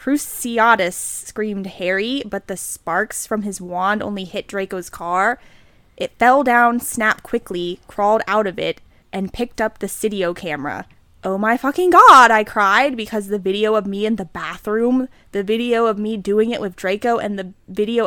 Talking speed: 175 wpm